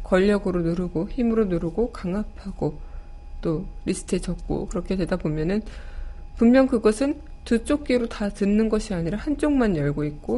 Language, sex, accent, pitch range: Korean, female, native, 170-215 Hz